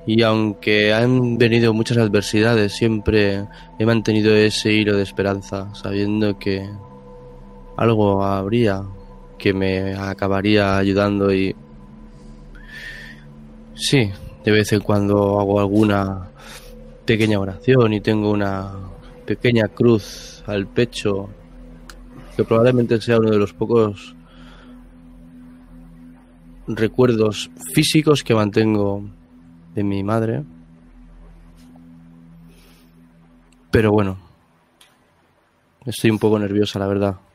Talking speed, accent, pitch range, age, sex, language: 95 wpm, Spanish, 85-110 Hz, 20-39, male, Spanish